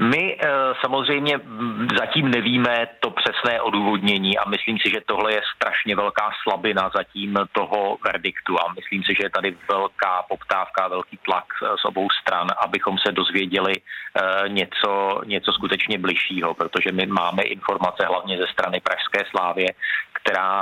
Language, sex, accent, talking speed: Czech, male, native, 145 wpm